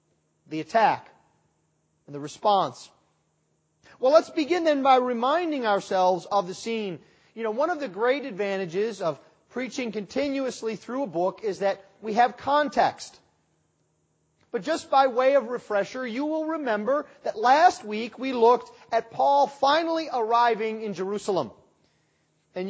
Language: English